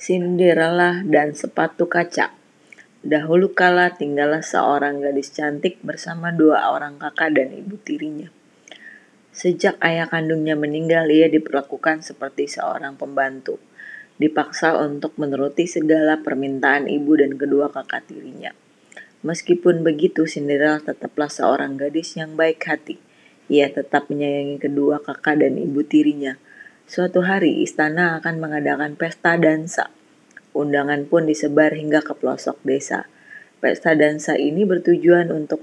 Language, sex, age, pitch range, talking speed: Indonesian, female, 20-39, 150-175 Hz, 120 wpm